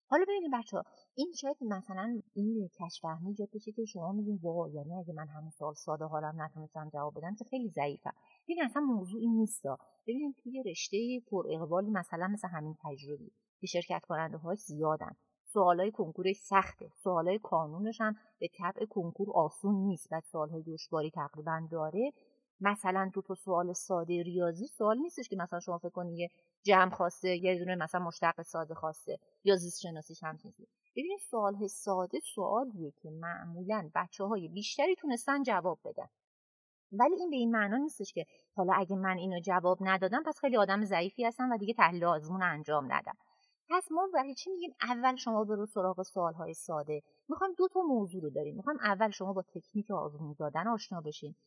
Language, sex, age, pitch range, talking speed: Persian, female, 30-49, 165-225 Hz, 180 wpm